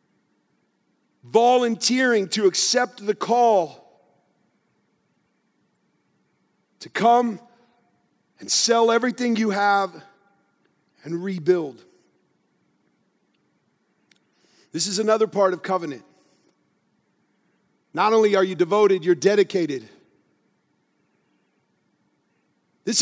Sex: male